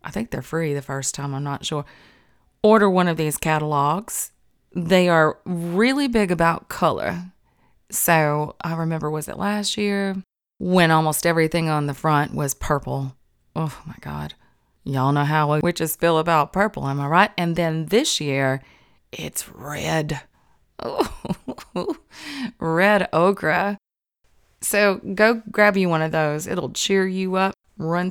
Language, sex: English, female